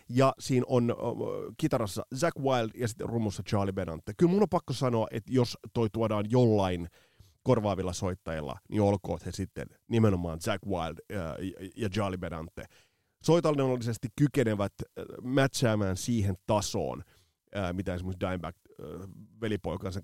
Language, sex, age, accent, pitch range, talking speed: Finnish, male, 30-49, native, 95-120 Hz, 125 wpm